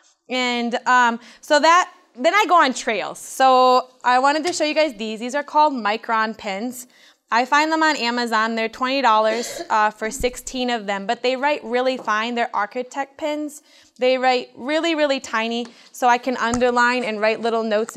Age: 20-39